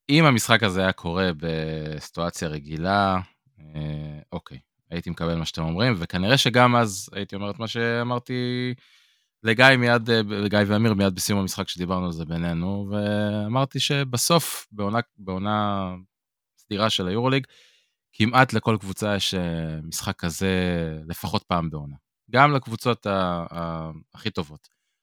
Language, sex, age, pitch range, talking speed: Hebrew, male, 20-39, 90-115 Hz, 130 wpm